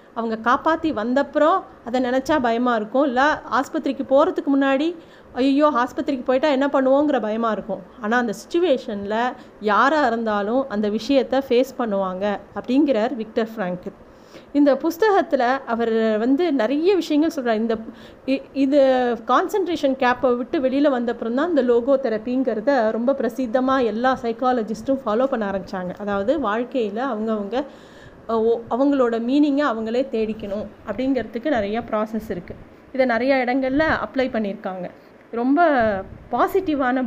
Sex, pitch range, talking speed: female, 225-275 Hz, 120 wpm